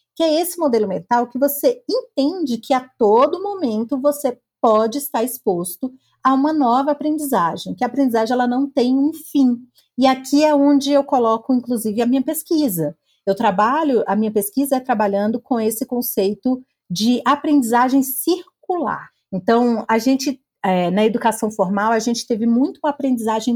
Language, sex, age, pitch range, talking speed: Portuguese, female, 40-59, 205-280 Hz, 160 wpm